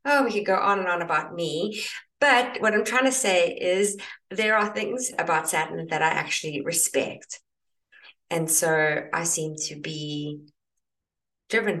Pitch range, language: 160-220 Hz, English